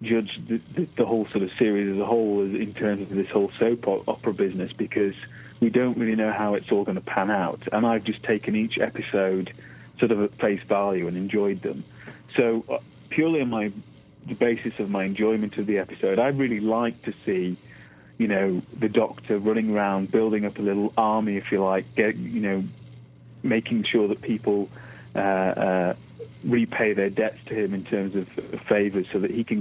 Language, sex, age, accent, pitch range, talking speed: English, male, 30-49, British, 95-110 Hz, 205 wpm